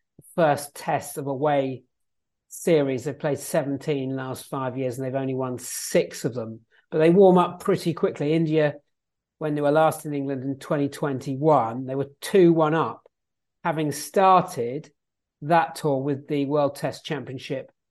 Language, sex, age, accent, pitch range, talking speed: English, male, 40-59, British, 130-150 Hz, 160 wpm